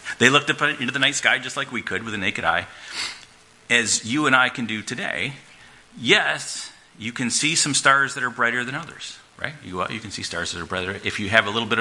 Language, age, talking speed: English, 40-59, 250 wpm